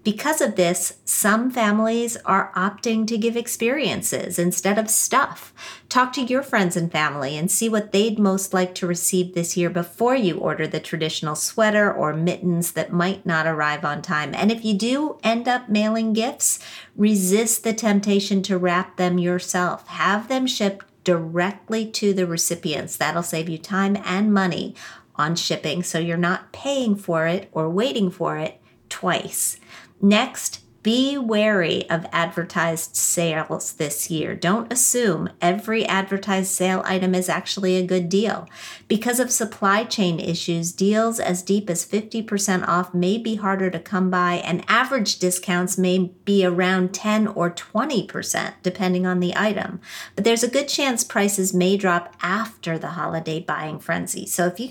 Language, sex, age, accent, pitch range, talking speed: English, female, 50-69, American, 175-215 Hz, 165 wpm